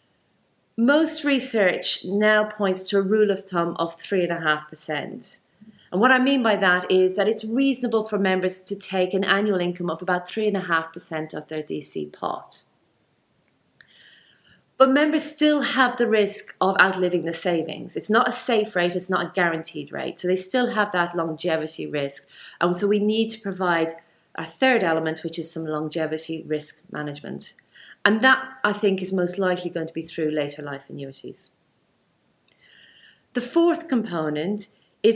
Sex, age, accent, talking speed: female, 40-59, British, 160 wpm